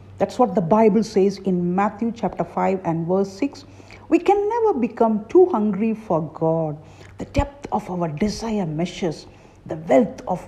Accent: Indian